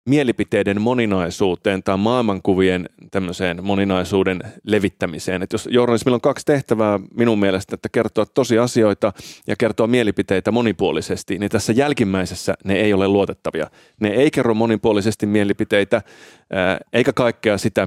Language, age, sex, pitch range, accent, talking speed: Finnish, 30-49, male, 100-125 Hz, native, 120 wpm